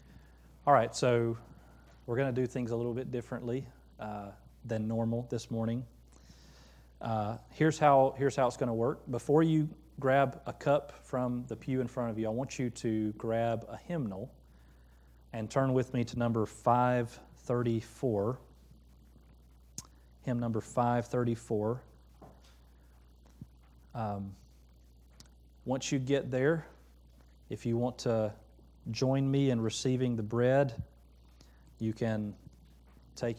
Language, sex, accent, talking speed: English, male, American, 130 wpm